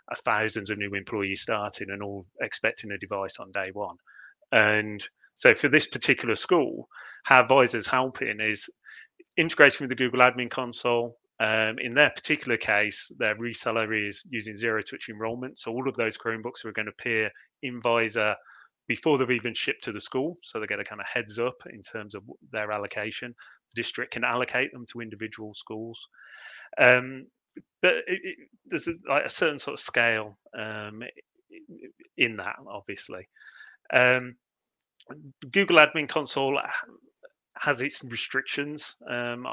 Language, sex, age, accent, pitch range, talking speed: English, male, 30-49, British, 110-135 Hz, 155 wpm